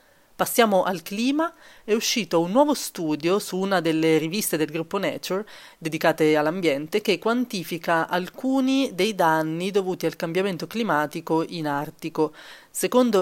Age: 30-49